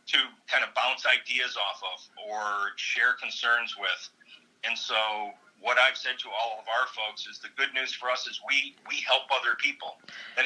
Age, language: 40-59, English